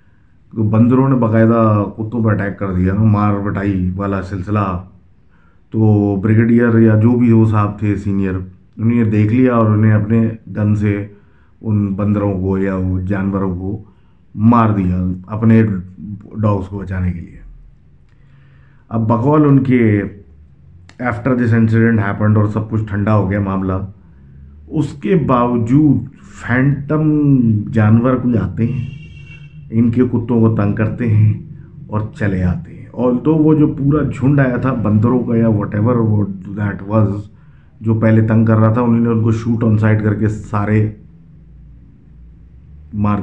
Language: Urdu